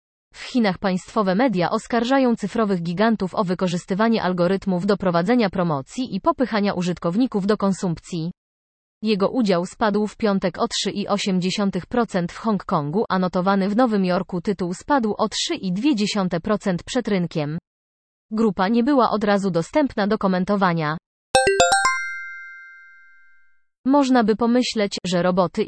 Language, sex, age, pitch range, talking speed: Polish, female, 30-49, 180-220 Hz, 120 wpm